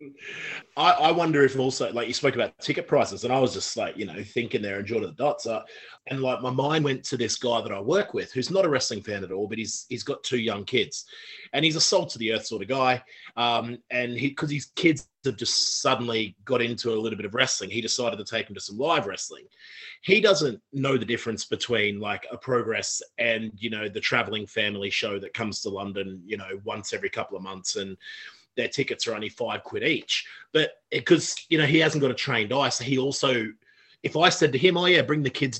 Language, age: English, 30-49